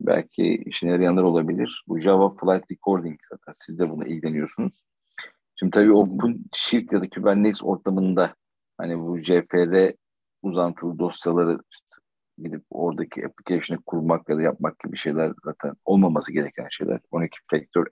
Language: Turkish